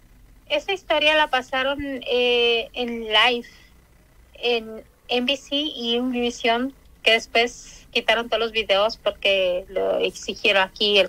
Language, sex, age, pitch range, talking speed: Spanish, female, 30-49, 230-280 Hz, 125 wpm